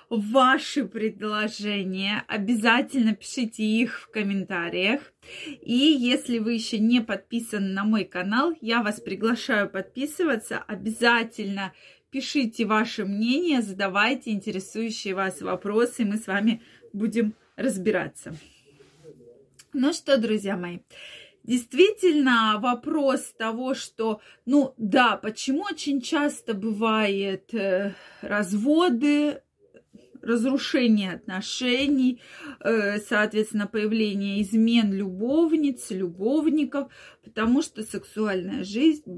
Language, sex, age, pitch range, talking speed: Russian, female, 20-39, 210-275 Hz, 90 wpm